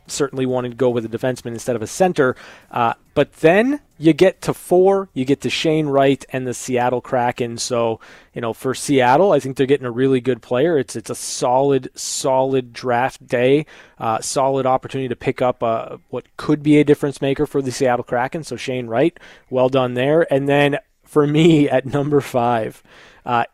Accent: American